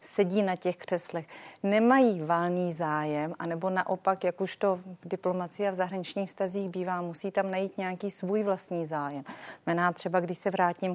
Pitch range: 170-230 Hz